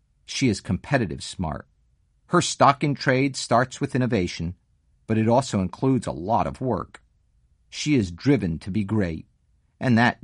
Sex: male